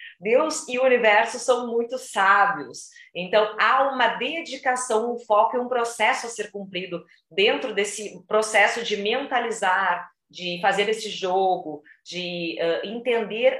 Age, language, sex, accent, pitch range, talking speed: 40-59, Portuguese, female, Brazilian, 180-275 Hz, 130 wpm